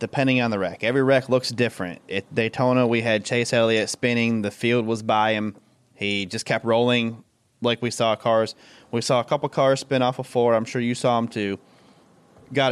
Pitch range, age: 105-125 Hz, 20-39